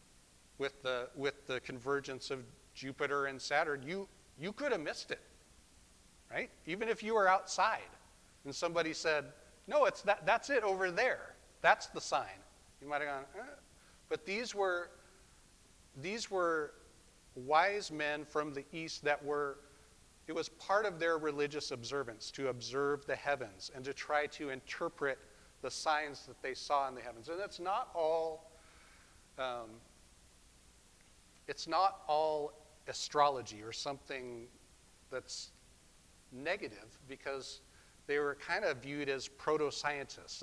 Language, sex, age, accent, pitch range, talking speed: English, male, 40-59, American, 130-155 Hz, 145 wpm